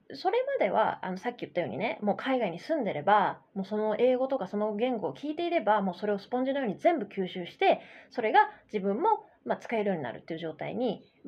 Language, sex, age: Japanese, female, 20-39